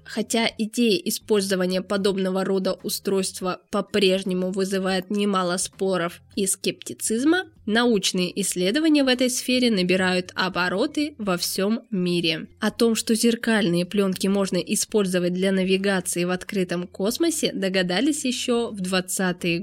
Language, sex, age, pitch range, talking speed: Russian, female, 20-39, 180-220 Hz, 115 wpm